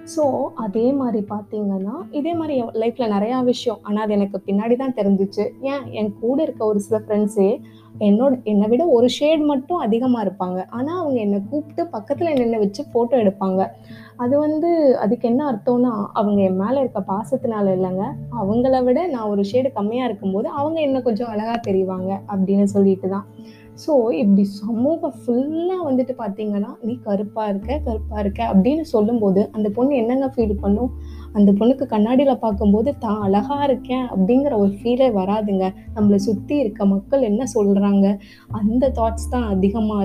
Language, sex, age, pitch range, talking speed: Tamil, female, 20-39, 200-255 Hz, 145 wpm